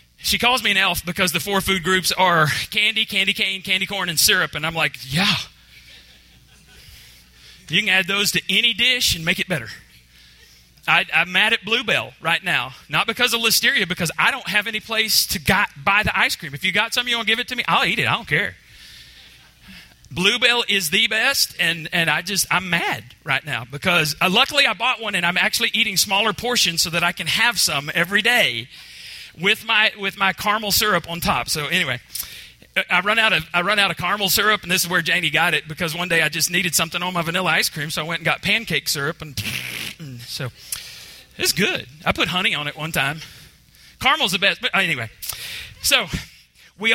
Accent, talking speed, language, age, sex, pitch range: American, 215 wpm, English, 30-49, male, 155-220 Hz